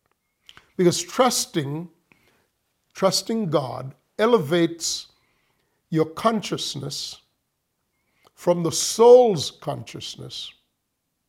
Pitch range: 160-210 Hz